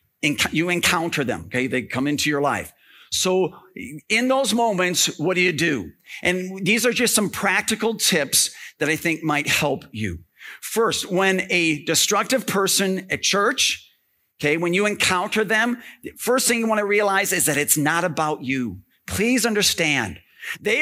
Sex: male